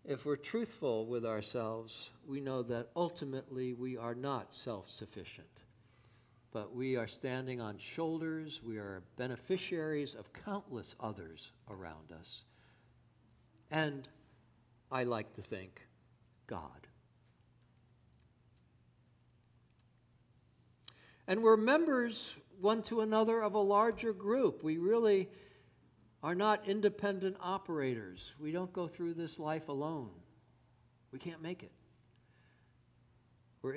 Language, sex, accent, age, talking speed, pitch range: English, male, American, 60-79, 110 wpm, 120-175 Hz